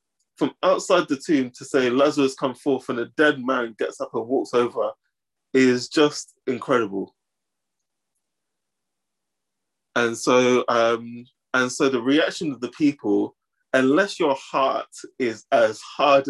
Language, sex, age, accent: English, male, 20-39, British